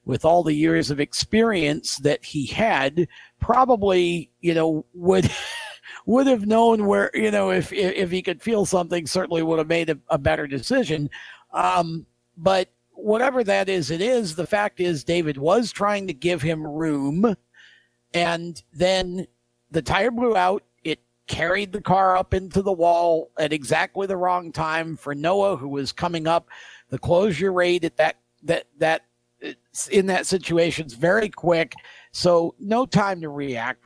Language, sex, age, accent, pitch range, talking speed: English, male, 50-69, American, 145-185 Hz, 165 wpm